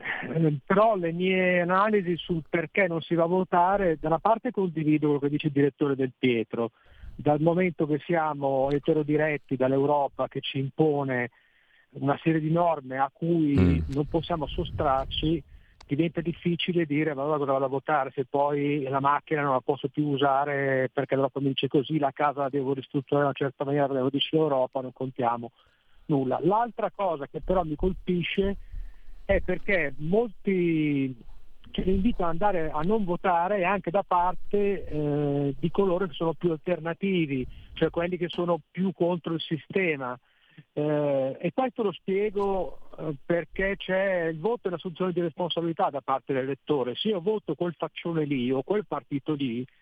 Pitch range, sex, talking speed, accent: 140-180 Hz, male, 170 wpm, native